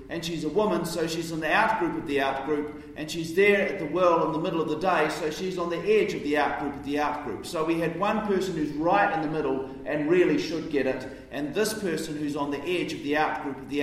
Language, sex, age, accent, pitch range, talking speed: English, male, 40-59, Australian, 125-185 Hz, 270 wpm